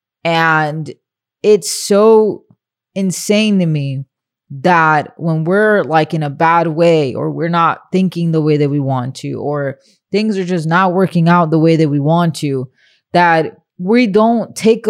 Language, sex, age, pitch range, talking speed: English, female, 20-39, 150-185 Hz, 165 wpm